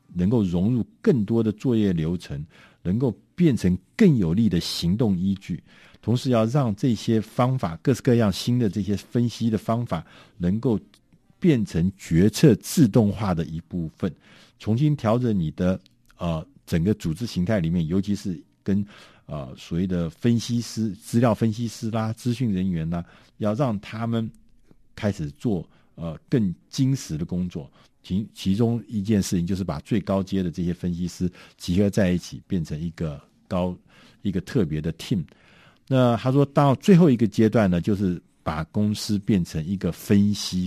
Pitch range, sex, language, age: 90-120 Hz, male, Chinese, 50-69